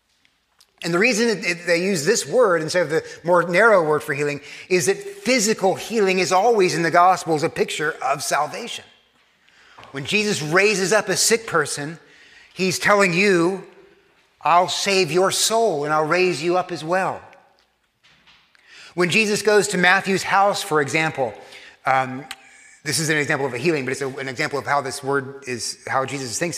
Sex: male